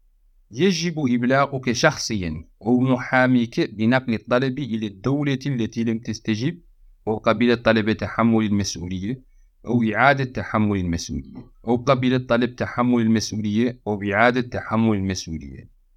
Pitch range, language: 100-125 Hz, Arabic